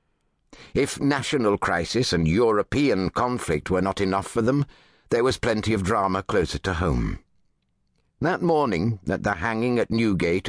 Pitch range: 90-115 Hz